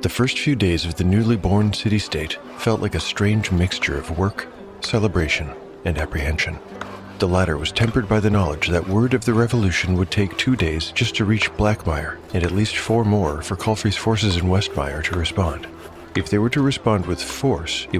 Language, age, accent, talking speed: English, 40-59, American, 195 wpm